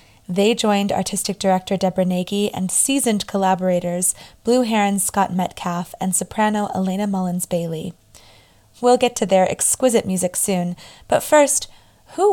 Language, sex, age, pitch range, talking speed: English, female, 20-39, 180-215 Hz, 135 wpm